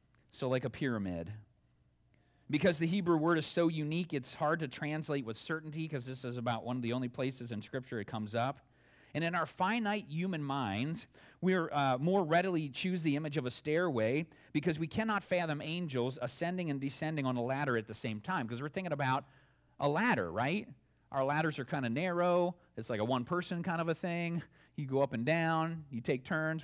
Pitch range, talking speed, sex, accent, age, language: 125-165 Hz, 205 wpm, male, American, 40-59, English